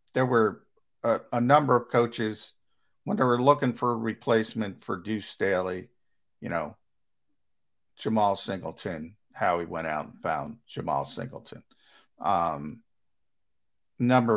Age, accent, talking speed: 50-69, American, 130 wpm